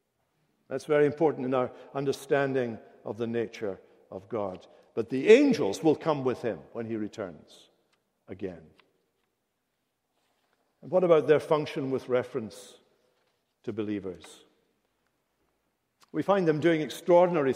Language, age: English, 60-79